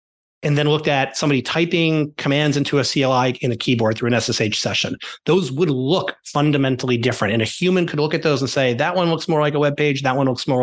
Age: 30-49